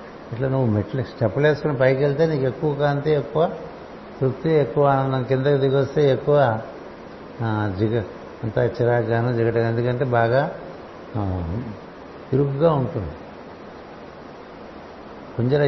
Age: 60-79